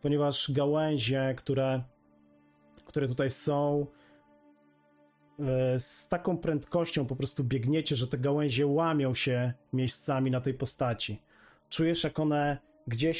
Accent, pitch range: native, 110-145 Hz